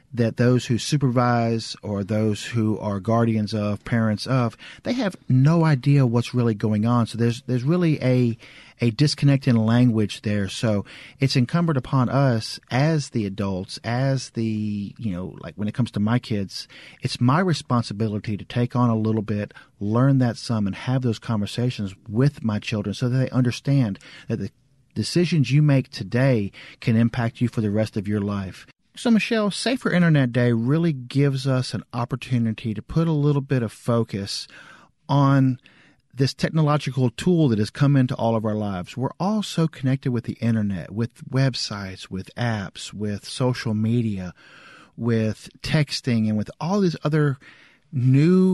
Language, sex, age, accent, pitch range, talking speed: English, male, 40-59, American, 110-140 Hz, 170 wpm